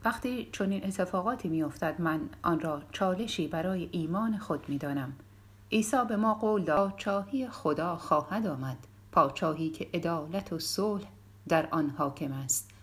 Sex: female